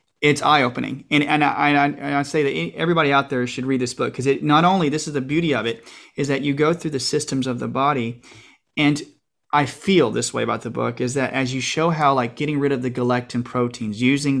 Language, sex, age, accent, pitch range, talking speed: English, male, 30-49, American, 125-150 Hz, 240 wpm